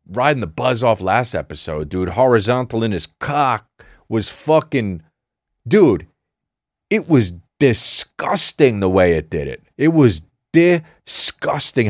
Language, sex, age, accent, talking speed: English, male, 40-59, American, 130 wpm